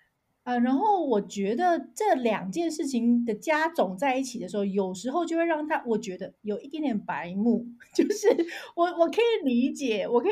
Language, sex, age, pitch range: Chinese, female, 30-49, 215-295 Hz